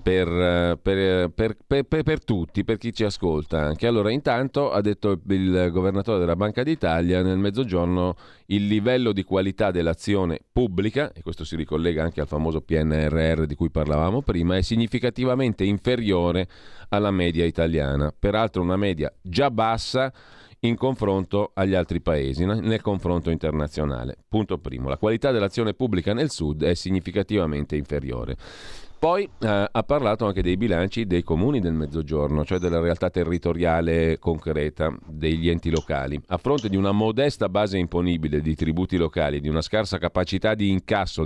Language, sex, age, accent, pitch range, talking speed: Italian, male, 40-59, native, 85-105 Hz, 155 wpm